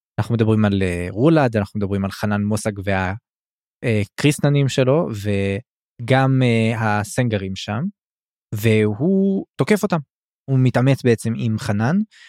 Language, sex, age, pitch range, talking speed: Hebrew, male, 20-39, 110-130 Hz, 120 wpm